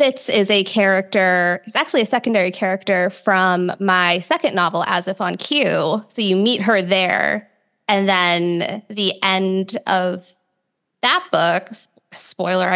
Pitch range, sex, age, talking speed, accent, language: 180-220 Hz, female, 20-39, 140 wpm, American, English